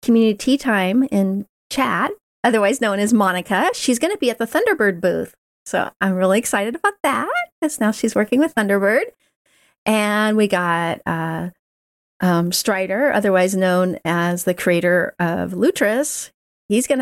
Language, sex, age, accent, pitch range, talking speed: English, female, 40-59, American, 190-280 Hz, 155 wpm